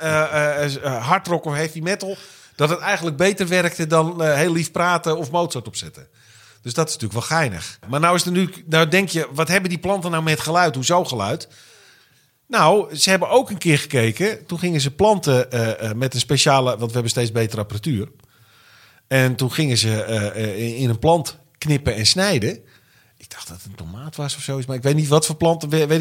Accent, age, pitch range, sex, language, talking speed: Dutch, 40-59, 130-185 Hz, male, Dutch, 205 wpm